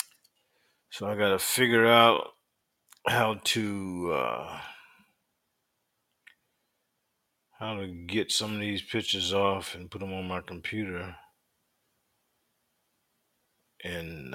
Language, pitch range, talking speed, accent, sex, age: English, 105-145 Hz, 95 wpm, American, male, 50-69